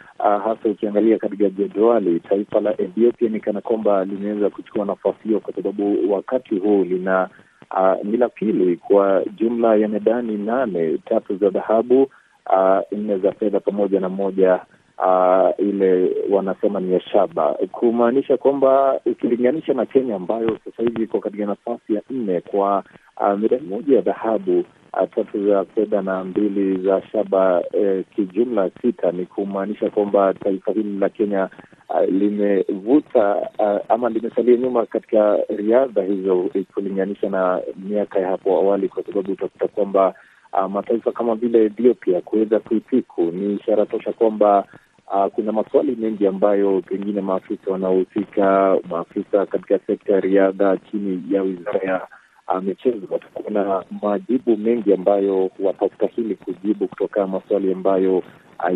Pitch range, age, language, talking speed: 95-115 Hz, 30-49, Swahili, 140 wpm